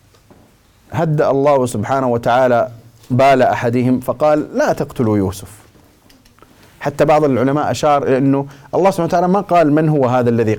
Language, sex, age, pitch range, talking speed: Arabic, male, 30-49, 120-165 Hz, 135 wpm